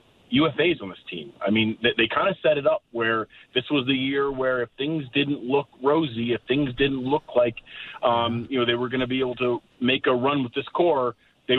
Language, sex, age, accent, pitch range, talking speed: English, male, 30-49, American, 115-140 Hz, 240 wpm